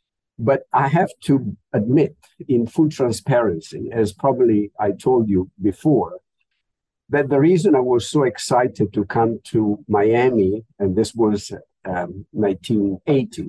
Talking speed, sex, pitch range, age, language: 135 wpm, male, 110-140 Hz, 50-69, English